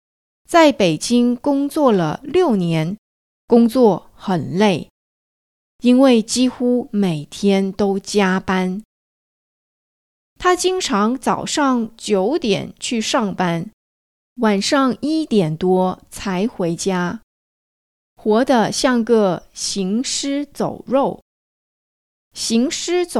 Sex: female